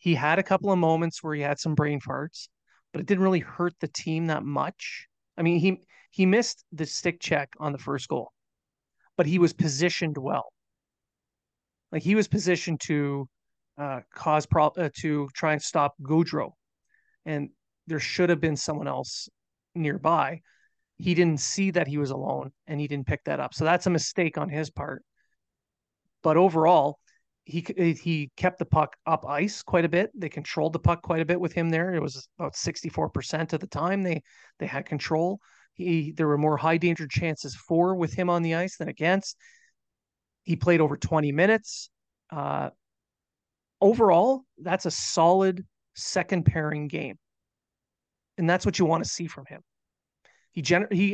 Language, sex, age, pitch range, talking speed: English, male, 30-49, 150-185 Hz, 180 wpm